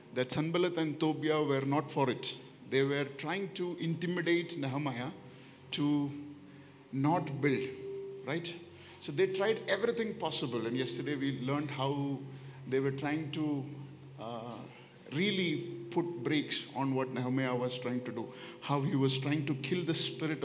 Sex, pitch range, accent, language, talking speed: male, 130-180 Hz, Indian, English, 150 wpm